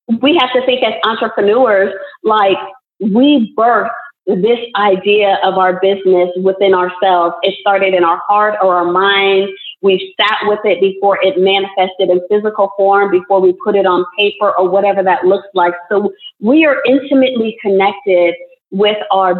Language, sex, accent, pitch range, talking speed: English, female, American, 185-235 Hz, 160 wpm